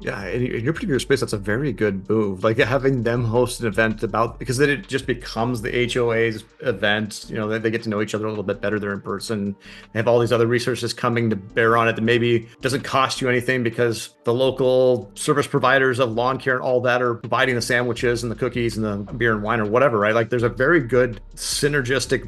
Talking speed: 240 wpm